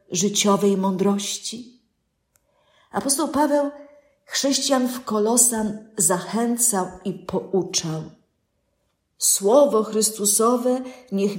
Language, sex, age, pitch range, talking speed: Polish, female, 50-69, 195-240 Hz, 70 wpm